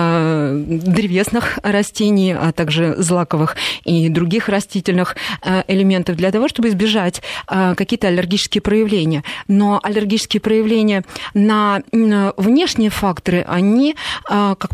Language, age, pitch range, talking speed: Russian, 30-49, 185-230 Hz, 100 wpm